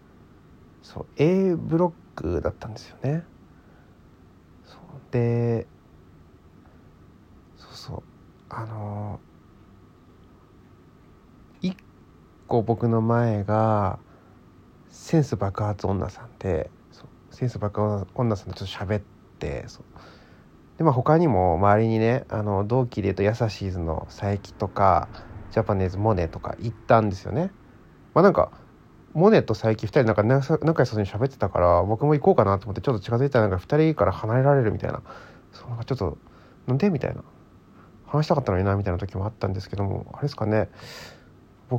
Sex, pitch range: male, 95-120 Hz